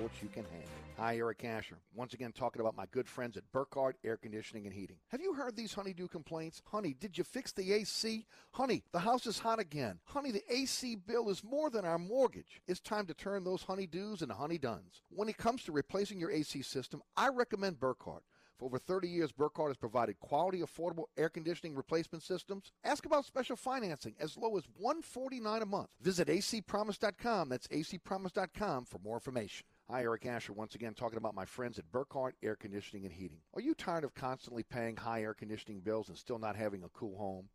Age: 50-69